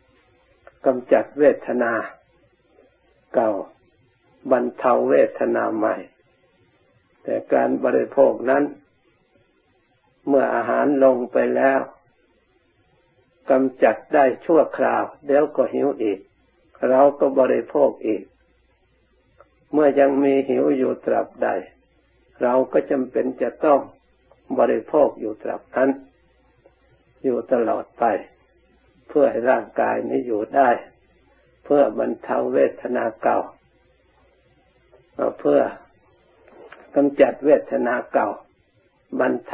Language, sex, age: Thai, male, 60-79